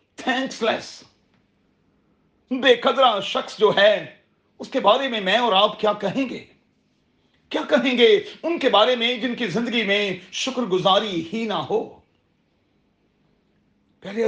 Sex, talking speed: male, 130 wpm